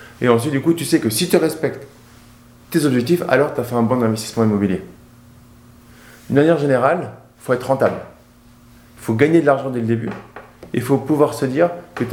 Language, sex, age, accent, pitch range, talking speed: French, male, 20-39, French, 110-130 Hz, 210 wpm